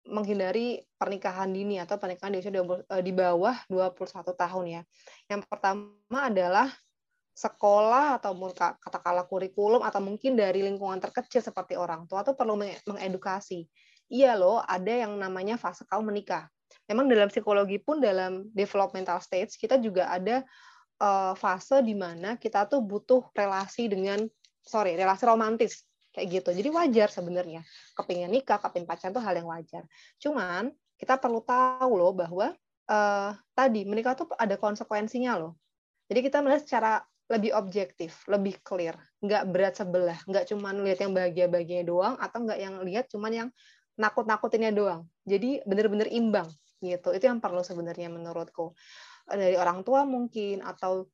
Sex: female